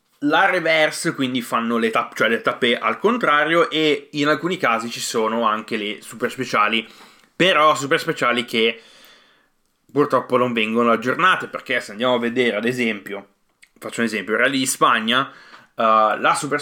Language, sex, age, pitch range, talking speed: Italian, male, 20-39, 115-150 Hz, 165 wpm